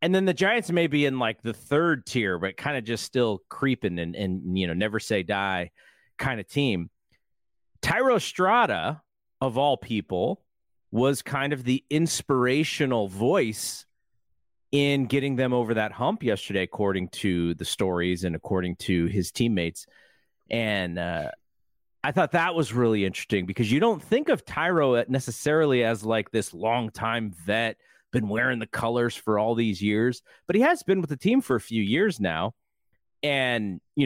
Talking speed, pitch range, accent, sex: 170 wpm, 105-140 Hz, American, male